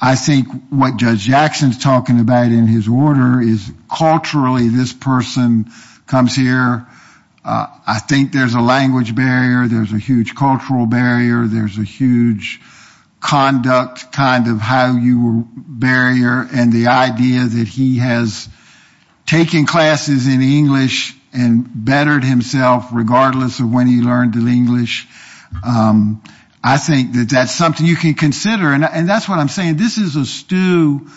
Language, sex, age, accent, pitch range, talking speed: English, male, 50-69, American, 120-145 Hz, 150 wpm